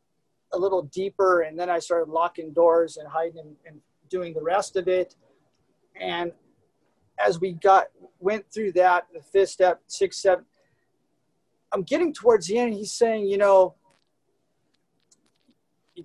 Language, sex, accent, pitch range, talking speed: English, male, American, 155-185 Hz, 155 wpm